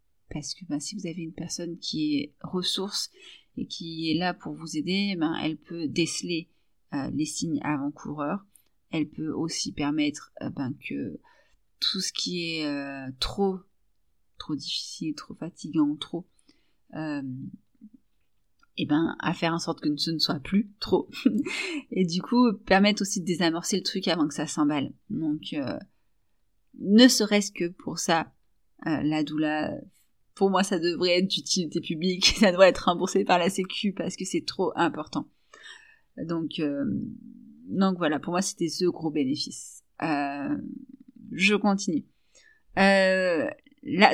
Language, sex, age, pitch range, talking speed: French, female, 30-49, 155-210 Hz, 155 wpm